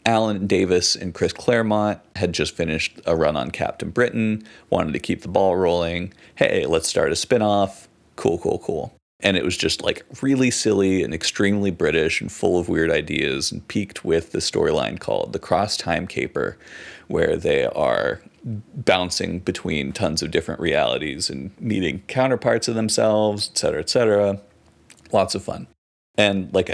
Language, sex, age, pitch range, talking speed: English, male, 30-49, 90-110 Hz, 170 wpm